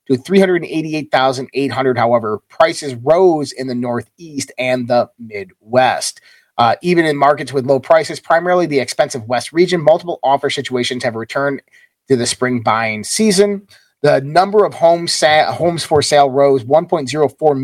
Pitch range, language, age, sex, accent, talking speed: 120-150 Hz, English, 30-49, male, American, 145 wpm